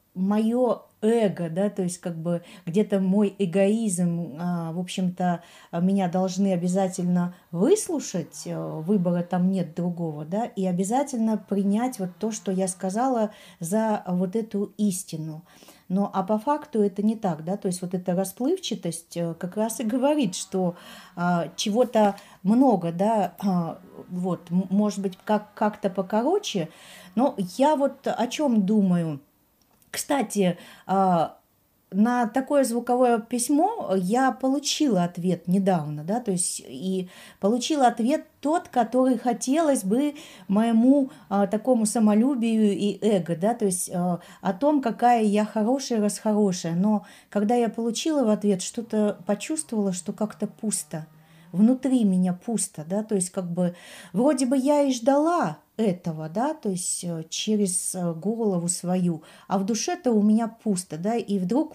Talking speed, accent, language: 135 wpm, native, Russian